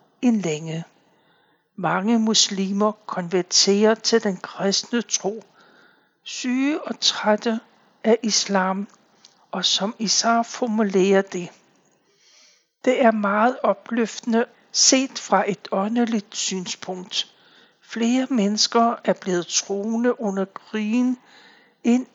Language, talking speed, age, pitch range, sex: Danish, 90 wpm, 60-79, 195-230 Hz, male